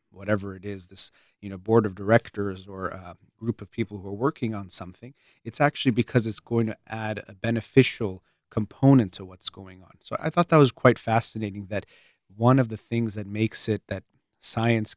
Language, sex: English, male